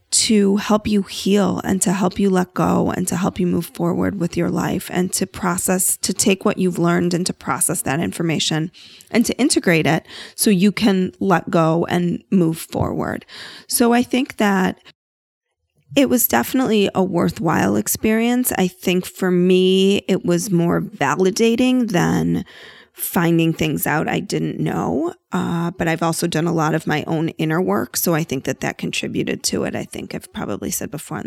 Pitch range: 170-205 Hz